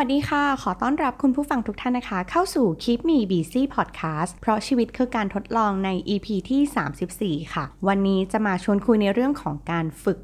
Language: Thai